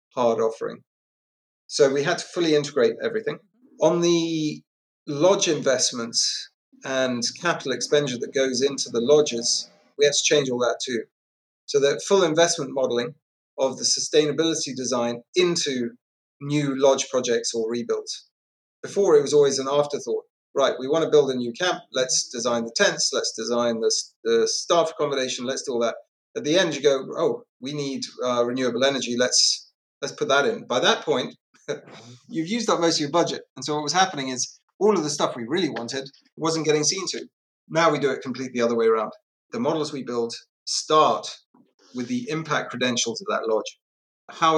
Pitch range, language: 125-170 Hz, English